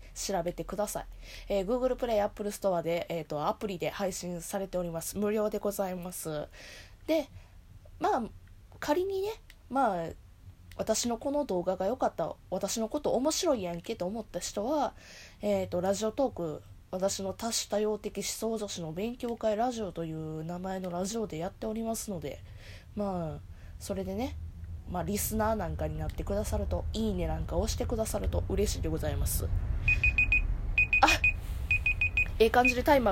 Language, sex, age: Japanese, female, 20-39